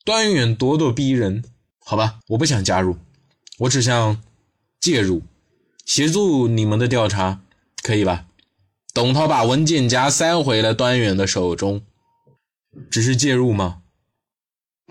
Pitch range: 95-130 Hz